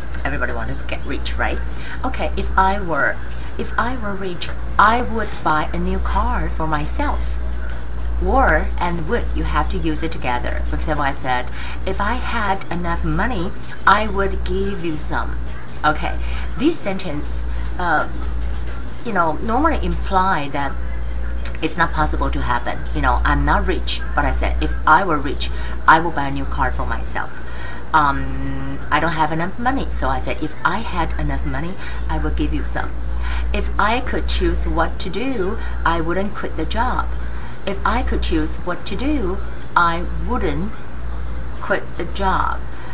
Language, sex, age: Chinese, female, 30-49